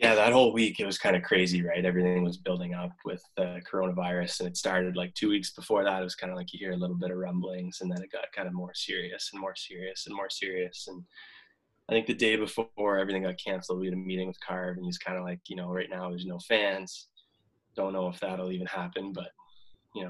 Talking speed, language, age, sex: 265 wpm, English, 20-39, male